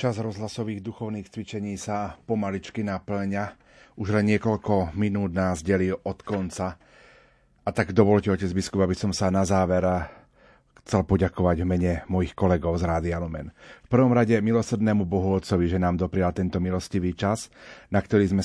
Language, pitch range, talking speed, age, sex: Slovak, 90-105 Hz, 150 wpm, 30-49, male